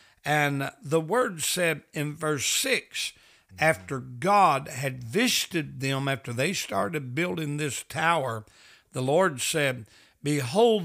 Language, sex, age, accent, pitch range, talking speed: English, male, 60-79, American, 130-170 Hz, 120 wpm